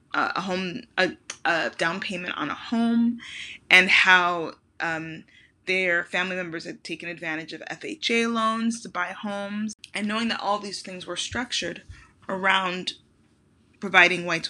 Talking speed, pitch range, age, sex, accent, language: 145 wpm, 185-240 Hz, 20-39, female, American, English